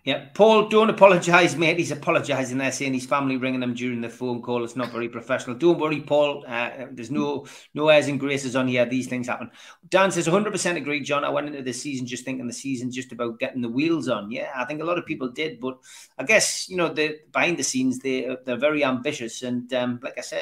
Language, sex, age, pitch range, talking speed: English, male, 30-49, 125-160 Hz, 240 wpm